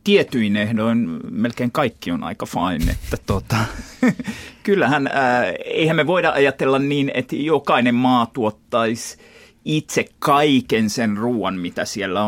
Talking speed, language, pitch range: 125 wpm, Finnish, 100-125 Hz